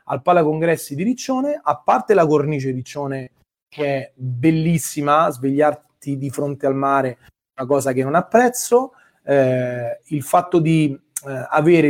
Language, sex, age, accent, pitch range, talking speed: Italian, male, 30-49, native, 135-170 Hz, 150 wpm